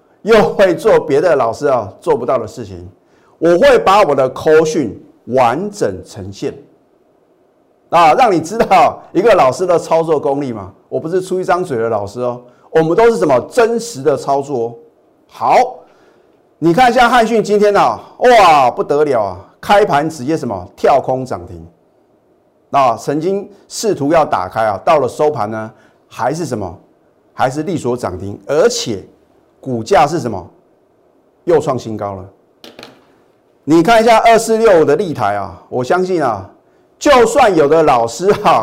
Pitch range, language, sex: 120-195 Hz, Chinese, male